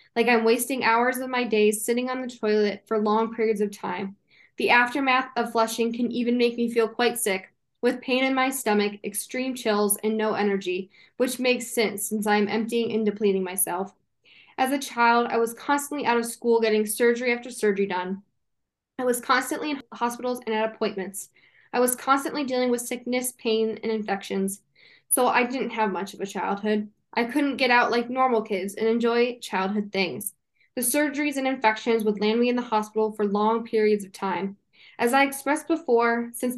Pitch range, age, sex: 210-245 Hz, 10-29, female